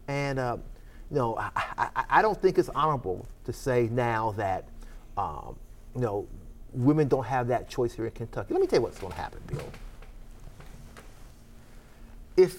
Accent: American